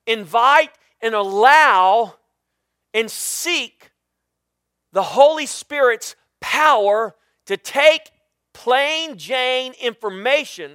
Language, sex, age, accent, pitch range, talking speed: English, male, 40-59, American, 135-220 Hz, 80 wpm